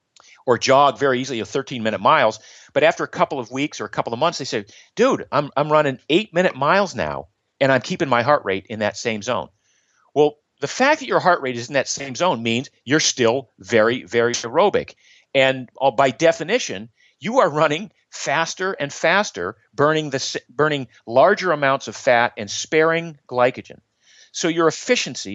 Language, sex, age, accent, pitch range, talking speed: English, male, 40-59, American, 120-155 Hz, 190 wpm